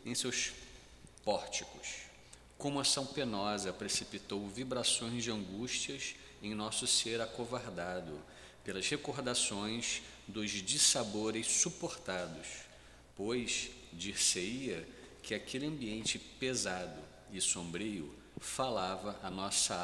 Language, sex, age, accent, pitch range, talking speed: Portuguese, male, 50-69, Brazilian, 95-125 Hz, 95 wpm